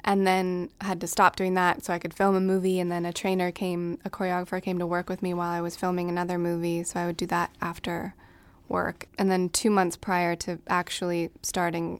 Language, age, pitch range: English, 20-39, 175-195 Hz